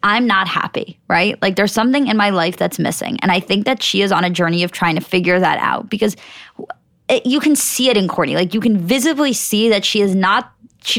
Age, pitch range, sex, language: 20-39, 190-255 Hz, female, English